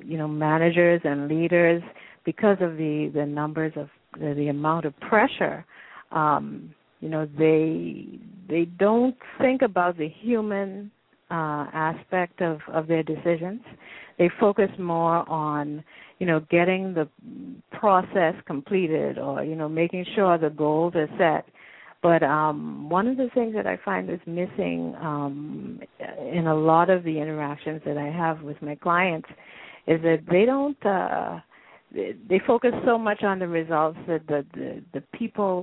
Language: English